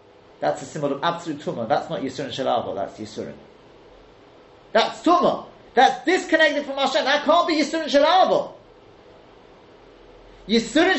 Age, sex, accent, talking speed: 30-49, male, British, 130 wpm